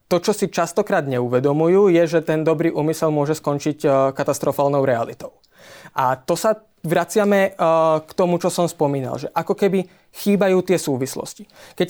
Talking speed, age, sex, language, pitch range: 160 wpm, 20-39, male, Slovak, 140-170 Hz